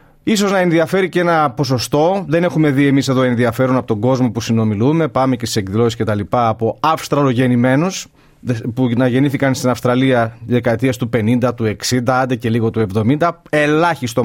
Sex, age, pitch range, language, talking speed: male, 30-49, 120-155 Hz, Greek, 175 wpm